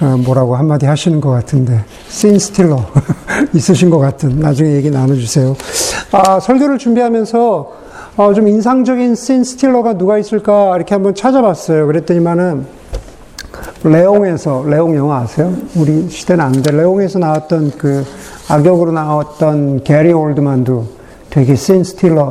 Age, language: 50-69, Korean